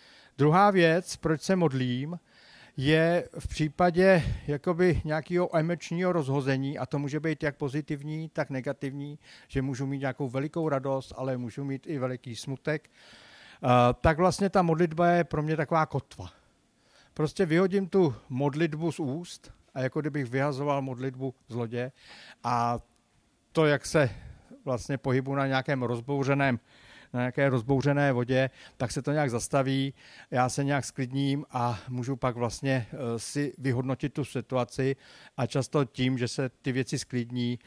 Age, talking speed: 50-69, 145 wpm